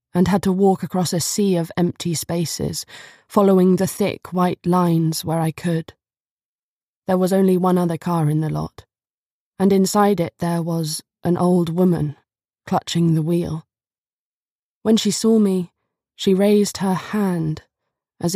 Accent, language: British, English